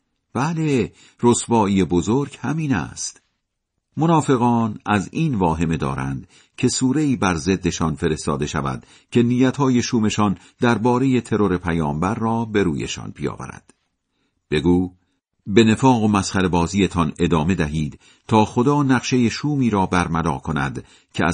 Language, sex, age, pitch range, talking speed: Persian, male, 50-69, 85-125 Hz, 120 wpm